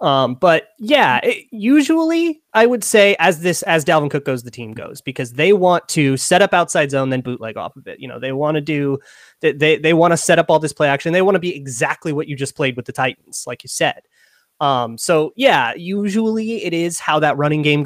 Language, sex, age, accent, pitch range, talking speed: English, male, 30-49, American, 135-175 Hz, 235 wpm